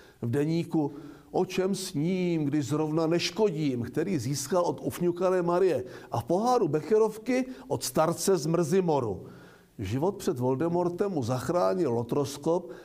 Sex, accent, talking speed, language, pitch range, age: male, native, 125 wpm, Czech, 130-180 Hz, 60-79